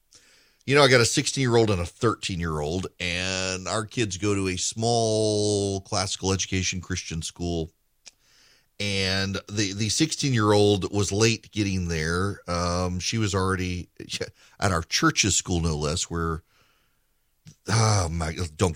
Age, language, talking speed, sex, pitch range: 40-59, English, 135 wpm, male, 90-115 Hz